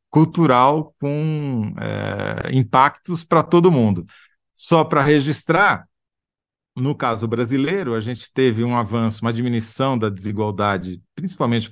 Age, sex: 50-69, male